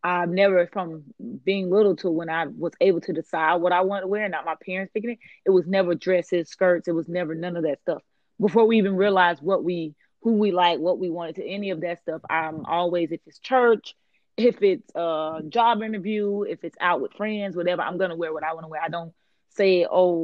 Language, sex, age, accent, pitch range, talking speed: English, female, 30-49, American, 170-200 Hz, 235 wpm